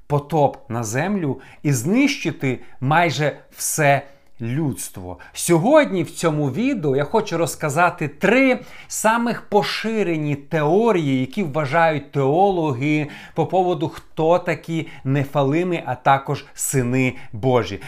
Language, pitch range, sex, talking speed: Ukrainian, 135-195 Hz, male, 105 wpm